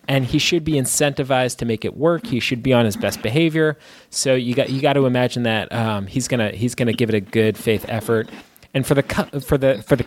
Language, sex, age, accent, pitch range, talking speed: English, male, 20-39, American, 120-155 Hz, 250 wpm